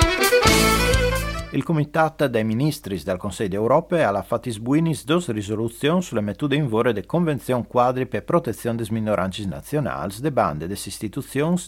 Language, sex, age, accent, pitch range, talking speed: Italian, male, 40-59, native, 100-145 Hz, 150 wpm